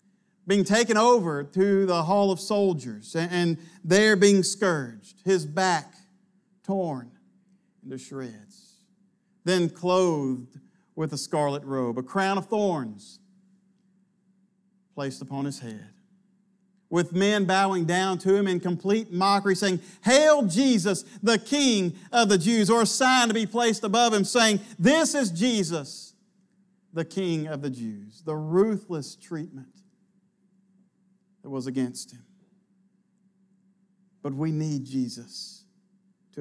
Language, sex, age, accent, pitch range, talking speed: English, male, 50-69, American, 170-200 Hz, 125 wpm